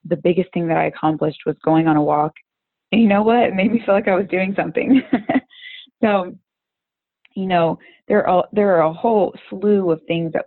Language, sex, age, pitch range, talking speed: English, female, 20-39, 170-205 Hz, 205 wpm